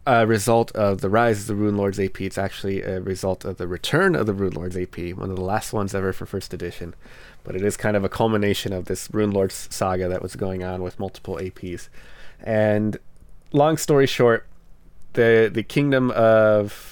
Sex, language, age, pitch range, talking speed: male, English, 20-39, 95-110 Hz, 205 wpm